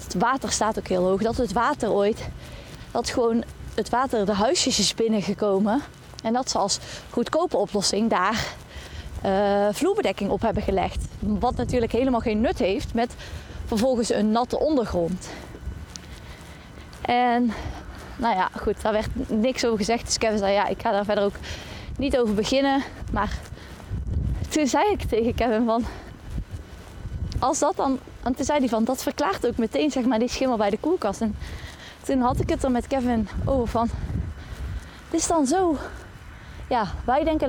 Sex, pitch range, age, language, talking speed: female, 215-260 Hz, 20-39, Dutch, 165 wpm